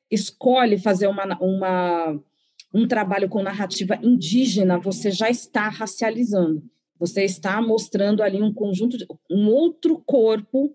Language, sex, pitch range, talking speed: Portuguese, female, 185-230 Hz, 130 wpm